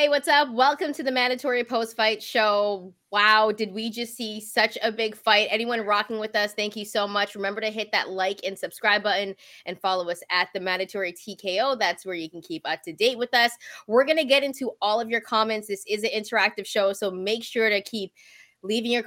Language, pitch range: English, 200-245 Hz